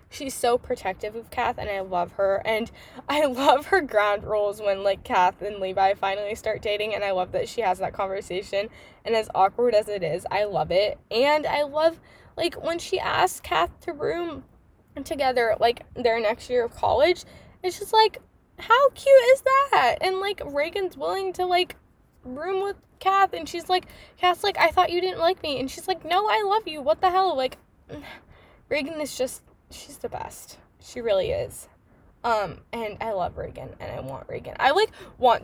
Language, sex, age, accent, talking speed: English, female, 10-29, American, 195 wpm